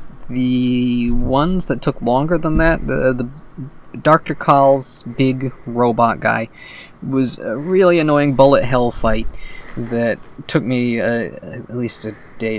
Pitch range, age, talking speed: 115-135 Hz, 20-39, 140 wpm